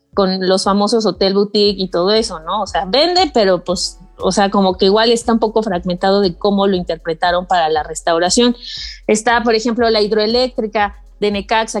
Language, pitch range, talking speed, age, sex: Spanish, 200-250 Hz, 190 wpm, 30-49, female